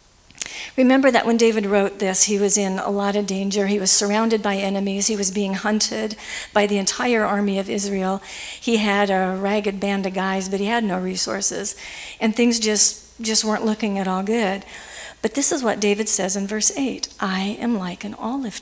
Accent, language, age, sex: American, English, 50-69, female